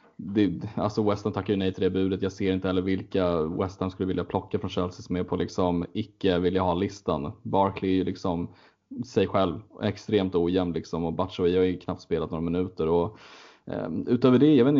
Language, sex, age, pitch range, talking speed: Swedish, male, 20-39, 95-105 Hz, 210 wpm